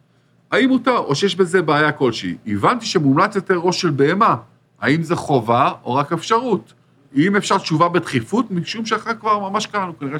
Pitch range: 135-185 Hz